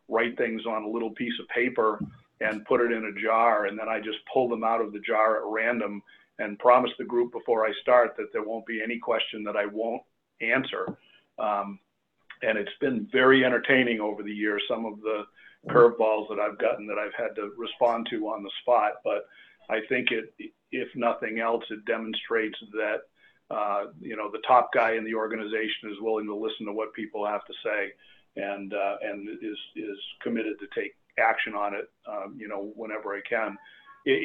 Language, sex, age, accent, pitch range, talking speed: English, male, 50-69, American, 105-115 Hz, 200 wpm